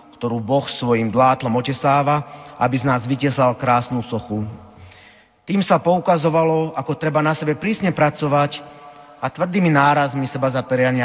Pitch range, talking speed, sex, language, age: 125-155 Hz, 140 wpm, male, Slovak, 40-59